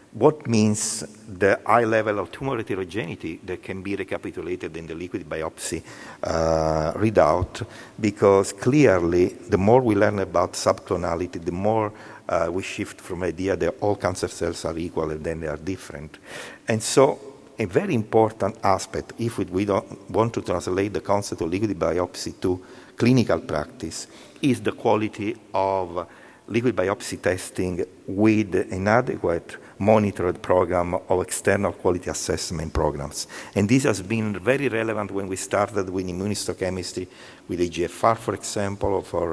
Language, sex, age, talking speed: English, male, 50-69, 150 wpm